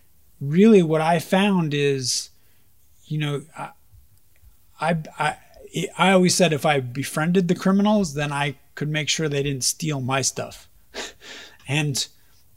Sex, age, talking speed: male, 30-49, 135 wpm